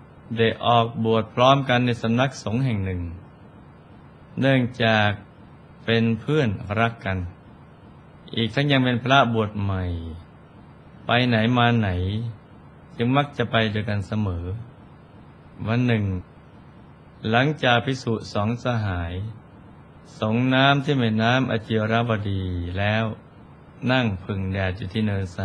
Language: Thai